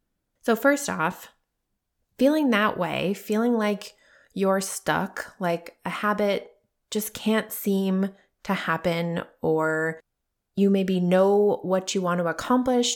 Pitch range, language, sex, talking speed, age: 165-205 Hz, English, female, 125 wpm, 20-39